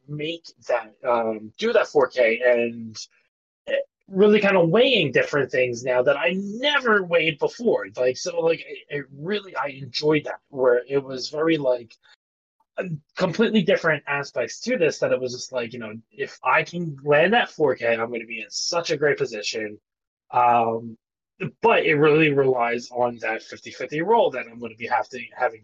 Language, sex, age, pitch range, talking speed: English, male, 20-39, 115-160 Hz, 180 wpm